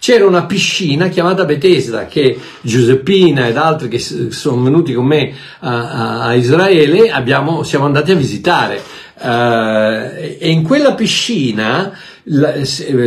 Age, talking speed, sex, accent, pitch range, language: 50-69, 125 wpm, male, native, 145-210 Hz, Italian